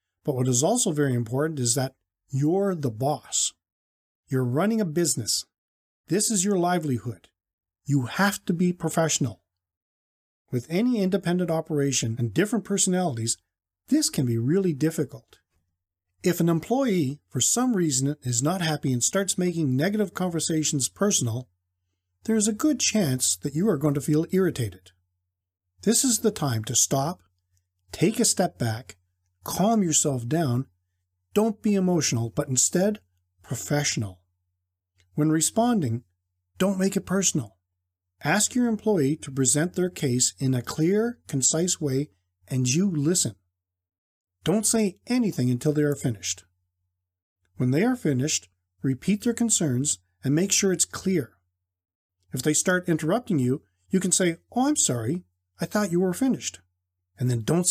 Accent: American